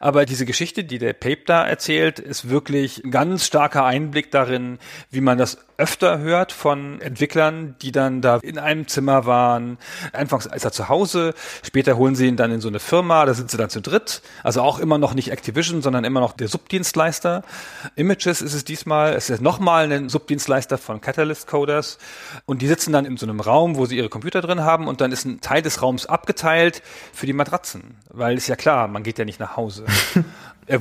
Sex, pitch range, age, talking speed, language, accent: male, 125-155 Hz, 40-59, 210 wpm, German, German